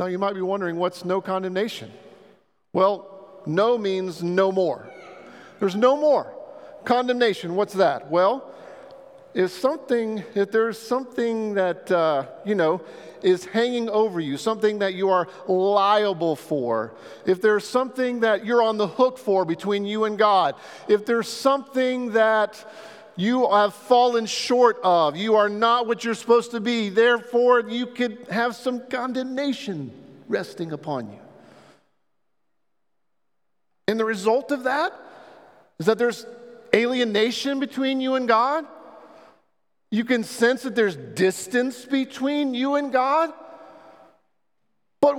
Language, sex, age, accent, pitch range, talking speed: English, male, 50-69, American, 195-260 Hz, 135 wpm